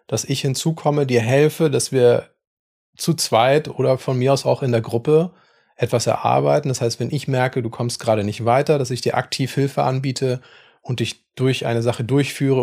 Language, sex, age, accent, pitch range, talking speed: German, male, 30-49, German, 115-135 Hz, 195 wpm